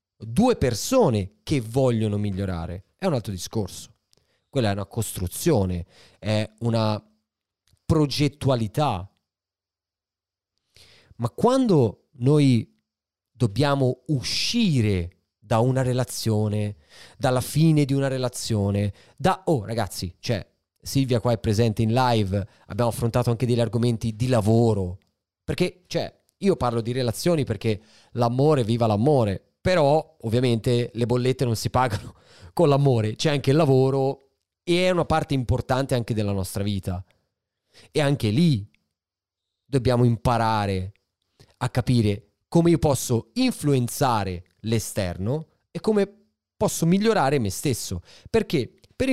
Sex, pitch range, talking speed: male, 100-135 Hz, 120 wpm